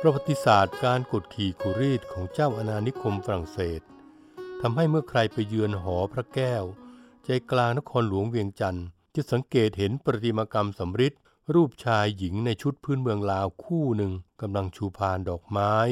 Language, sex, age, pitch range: Thai, male, 60-79, 100-140 Hz